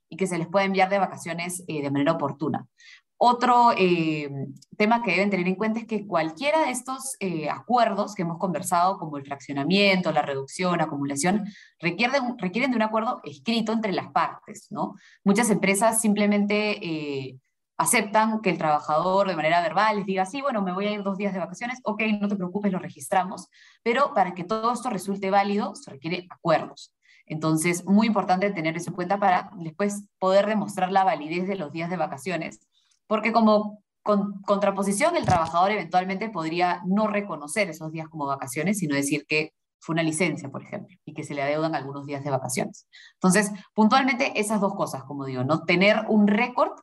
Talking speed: 185 wpm